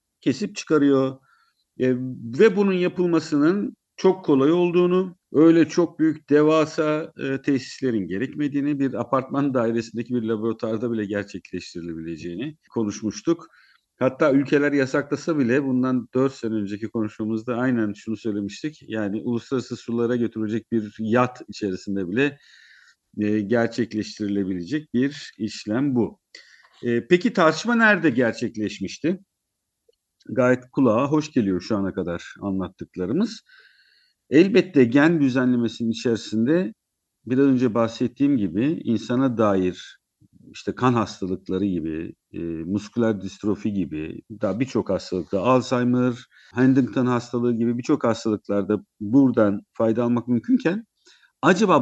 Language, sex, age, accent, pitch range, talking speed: Turkish, male, 50-69, native, 105-145 Hz, 110 wpm